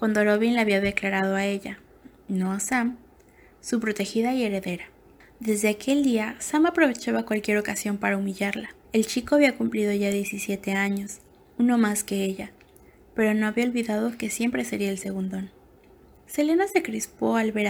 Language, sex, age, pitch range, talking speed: Spanish, female, 20-39, 200-235 Hz, 165 wpm